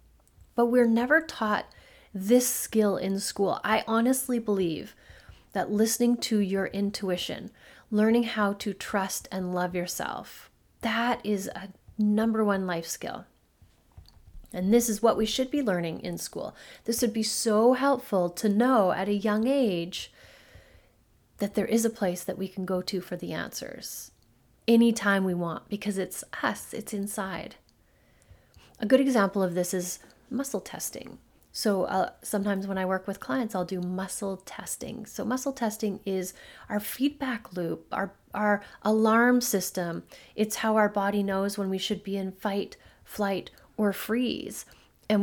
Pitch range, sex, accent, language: 185-225 Hz, female, American, English